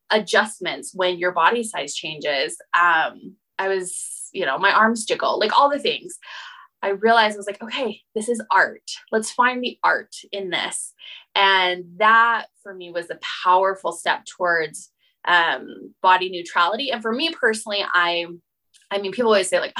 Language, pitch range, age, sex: English, 185-270 Hz, 20-39, female